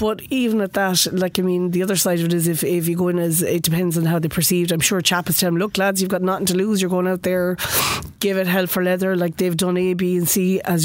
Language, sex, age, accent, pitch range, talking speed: English, female, 30-49, Irish, 170-190 Hz, 305 wpm